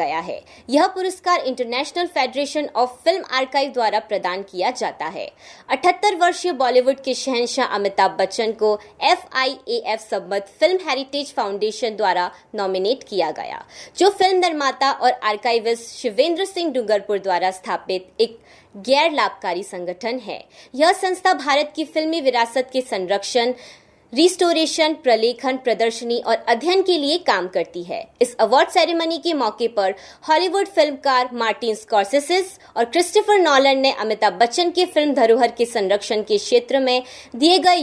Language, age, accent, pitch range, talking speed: Hindi, 20-39, native, 220-330 Hz, 140 wpm